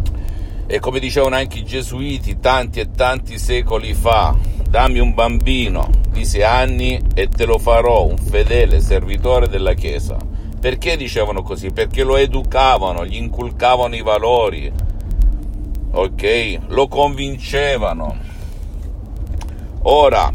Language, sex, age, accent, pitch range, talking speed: Italian, male, 50-69, native, 85-125 Hz, 120 wpm